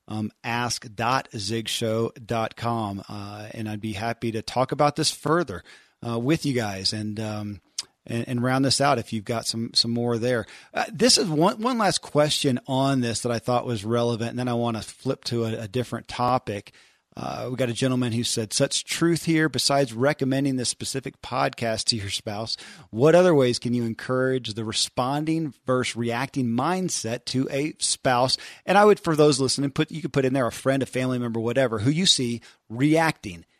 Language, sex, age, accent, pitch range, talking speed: English, male, 40-59, American, 115-135 Hz, 195 wpm